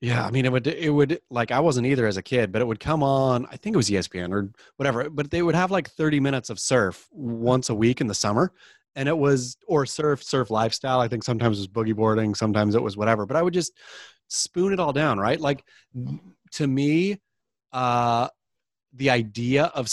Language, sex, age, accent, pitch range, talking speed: English, male, 30-49, American, 110-140 Hz, 225 wpm